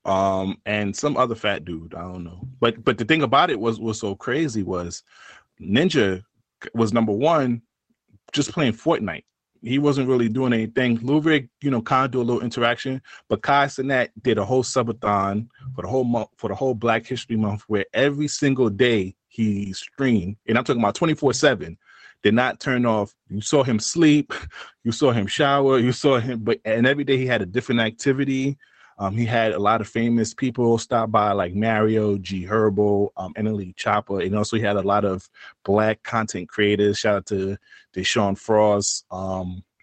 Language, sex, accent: English, male, American